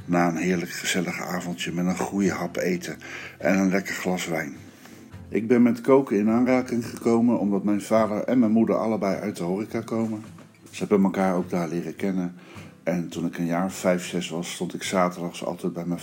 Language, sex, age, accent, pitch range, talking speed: Dutch, male, 60-79, Dutch, 85-105 Hz, 200 wpm